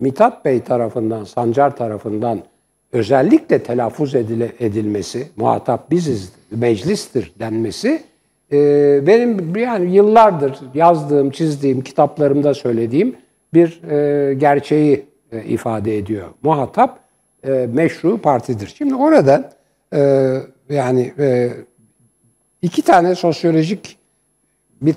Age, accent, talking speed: 60-79, native, 95 wpm